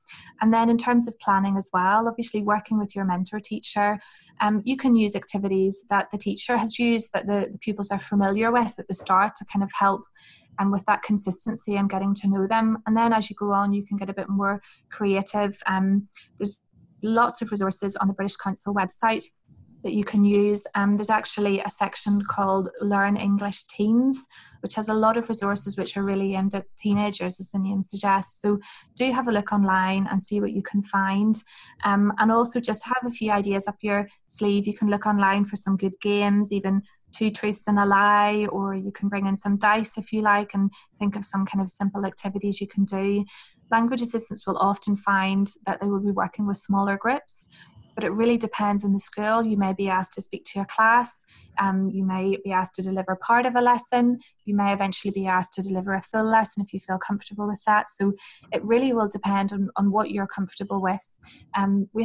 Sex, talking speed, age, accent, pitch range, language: female, 220 wpm, 20-39, British, 195-215 Hz, English